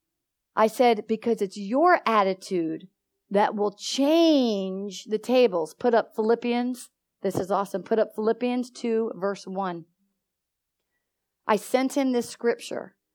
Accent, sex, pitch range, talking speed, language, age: American, female, 210-290 Hz, 130 wpm, English, 50-69